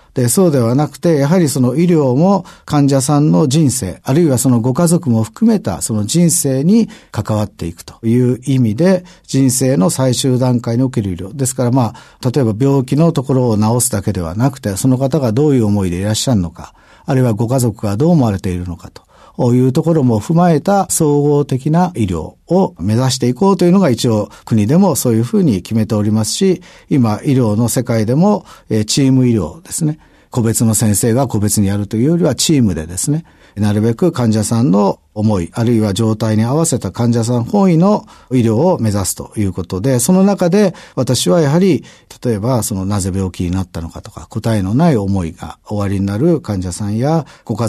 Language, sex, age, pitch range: Japanese, male, 50-69, 105-150 Hz